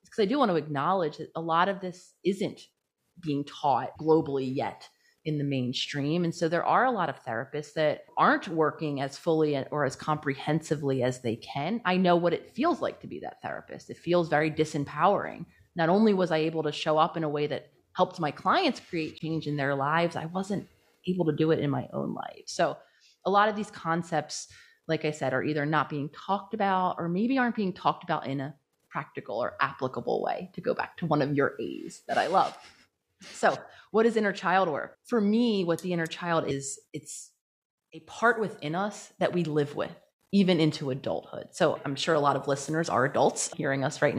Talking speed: 215 wpm